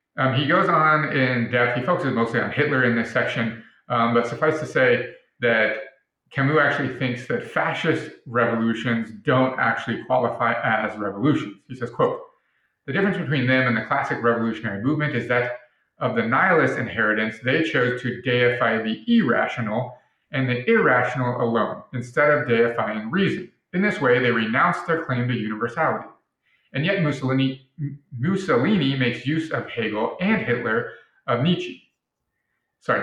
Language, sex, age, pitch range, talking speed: English, male, 30-49, 120-150 Hz, 155 wpm